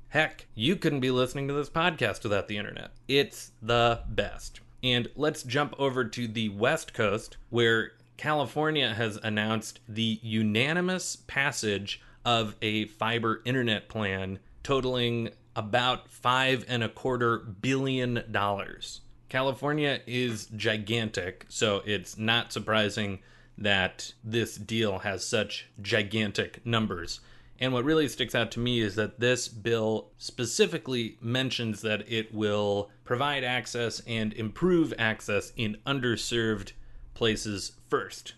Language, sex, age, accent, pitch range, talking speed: English, male, 30-49, American, 105-125 Hz, 125 wpm